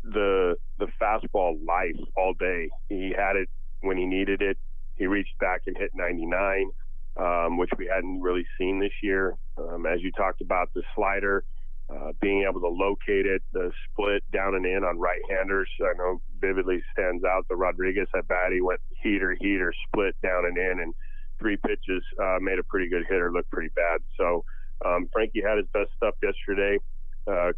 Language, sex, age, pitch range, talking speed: English, male, 30-49, 90-100 Hz, 185 wpm